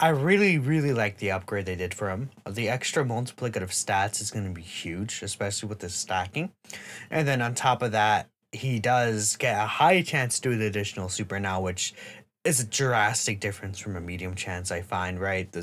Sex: male